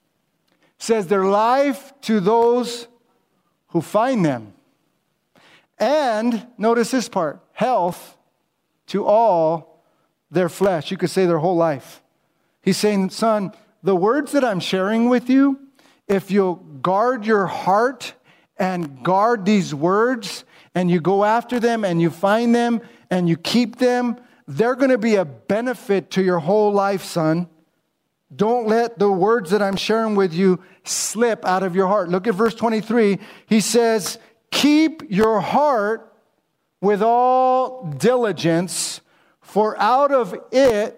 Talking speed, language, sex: 140 wpm, English, male